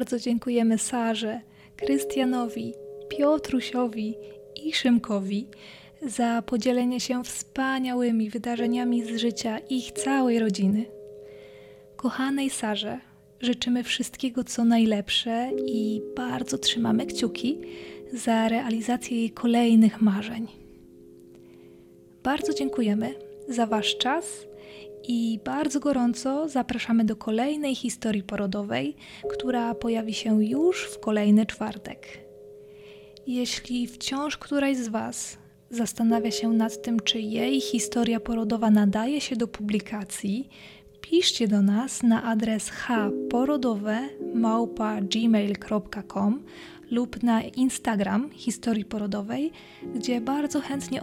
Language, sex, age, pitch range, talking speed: Polish, female, 20-39, 210-245 Hz, 100 wpm